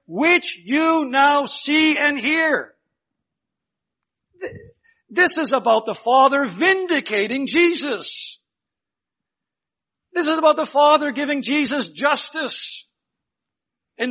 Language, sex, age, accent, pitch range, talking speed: English, male, 60-79, American, 225-305 Hz, 95 wpm